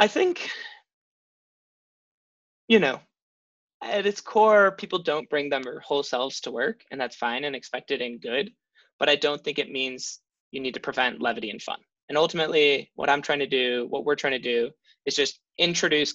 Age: 20-39